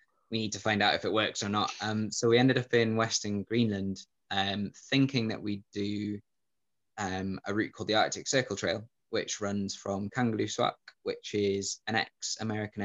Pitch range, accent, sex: 100-110 Hz, British, male